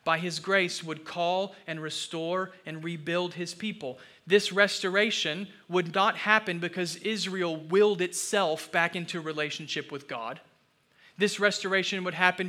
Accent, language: American, English